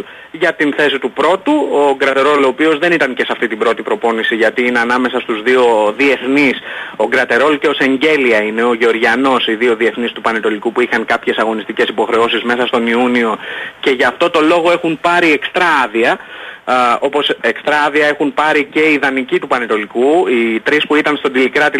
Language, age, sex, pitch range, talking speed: Greek, 30-49, male, 125-155 Hz, 185 wpm